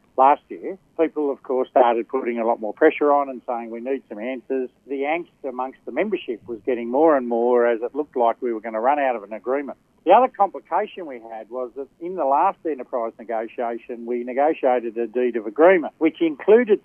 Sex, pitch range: male, 120-150 Hz